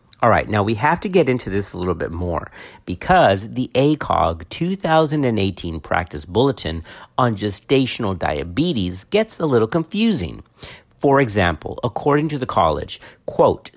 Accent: American